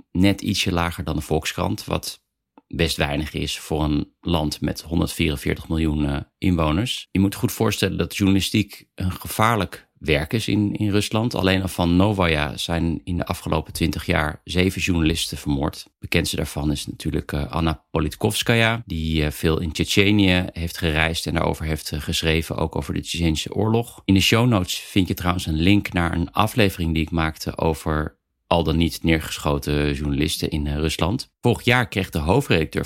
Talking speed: 170 wpm